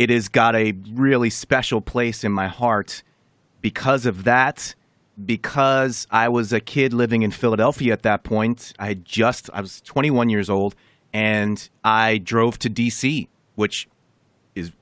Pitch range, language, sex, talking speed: 100-120 Hz, English, male, 165 wpm